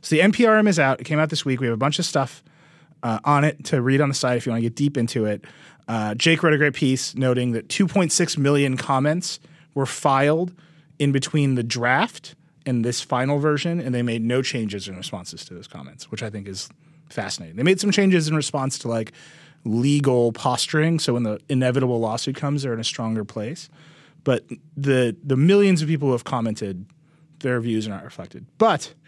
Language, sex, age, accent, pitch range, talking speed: English, male, 30-49, American, 120-160 Hz, 215 wpm